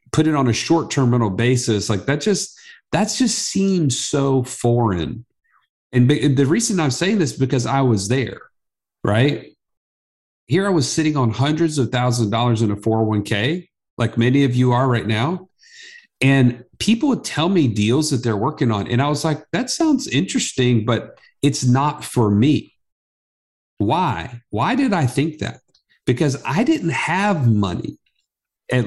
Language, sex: English, male